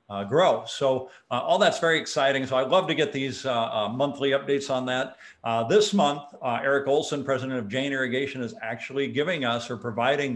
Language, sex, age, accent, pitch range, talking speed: English, male, 50-69, American, 120-145 Hz, 210 wpm